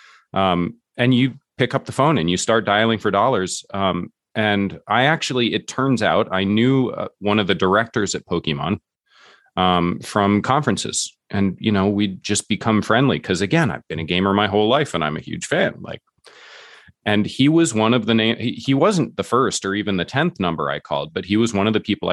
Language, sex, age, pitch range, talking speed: English, male, 30-49, 95-115 Hz, 215 wpm